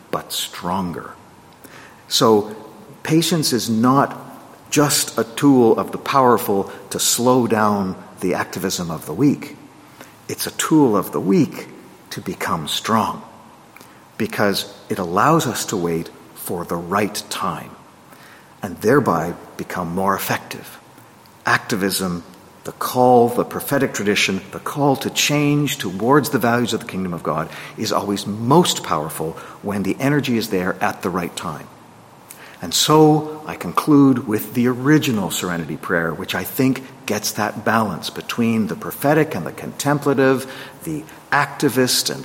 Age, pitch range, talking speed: 50-69, 105-145 Hz, 140 wpm